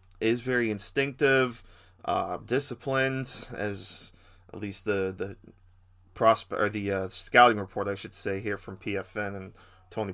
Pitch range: 95-115 Hz